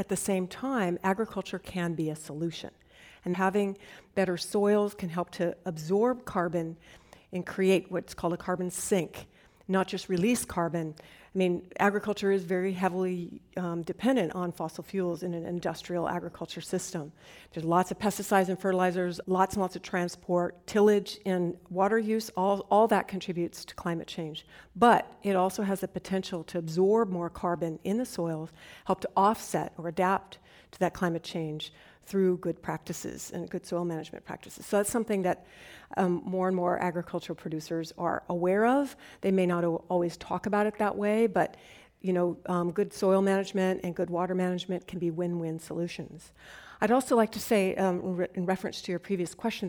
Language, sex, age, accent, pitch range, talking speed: English, female, 50-69, American, 175-195 Hz, 180 wpm